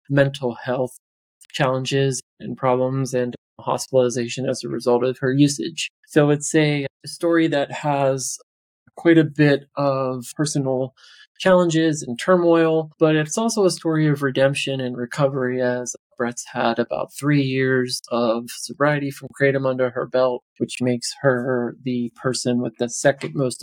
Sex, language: male, English